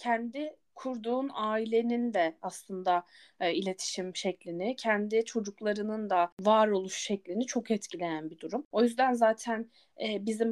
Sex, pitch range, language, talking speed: female, 190-235 Hz, Turkish, 125 wpm